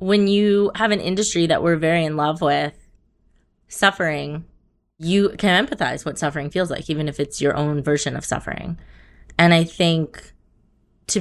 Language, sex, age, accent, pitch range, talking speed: English, female, 20-39, American, 150-180 Hz, 165 wpm